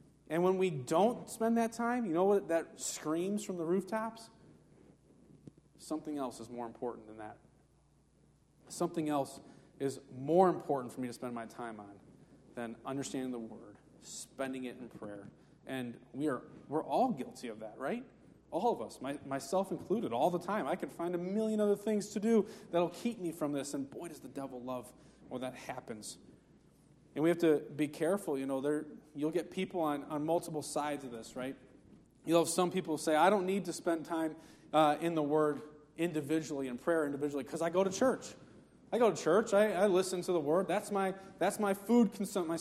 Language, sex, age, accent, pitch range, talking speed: English, male, 30-49, American, 140-185 Hz, 205 wpm